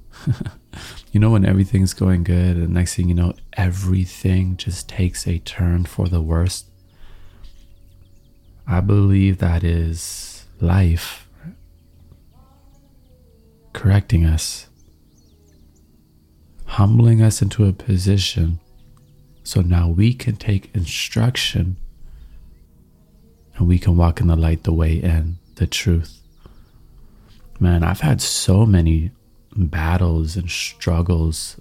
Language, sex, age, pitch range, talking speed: English, male, 30-49, 85-105 Hz, 110 wpm